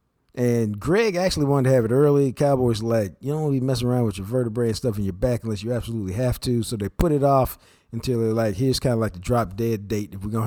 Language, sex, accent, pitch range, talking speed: English, male, American, 110-140 Hz, 280 wpm